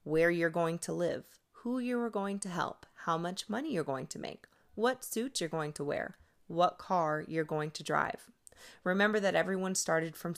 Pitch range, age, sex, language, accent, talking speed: 155-195 Hz, 30-49, female, English, American, 200 wpm